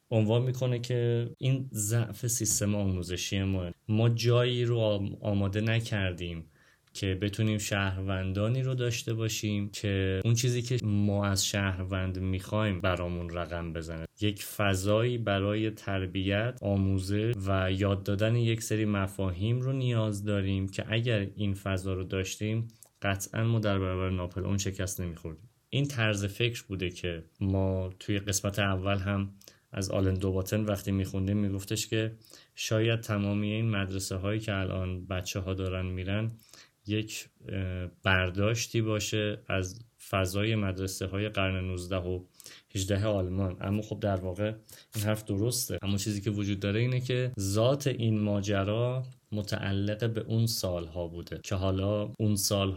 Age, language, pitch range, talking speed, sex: 30-49, Persian, 95-110 Hz, 140 wpm, male